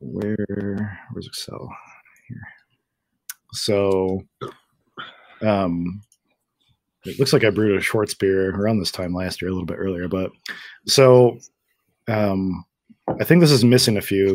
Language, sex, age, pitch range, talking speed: English, male, 20-39, 95-110 Hz, 140 wpm